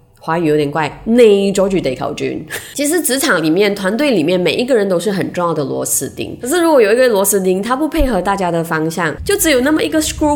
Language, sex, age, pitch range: Chinese, female, 20-39, 170-255 Hz